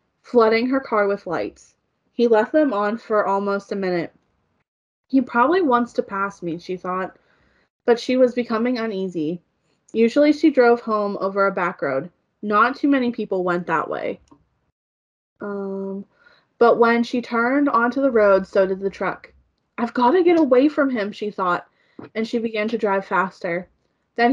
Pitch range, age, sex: 195-245 Hz, 20-39, female